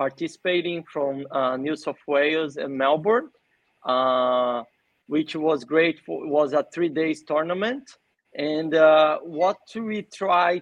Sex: male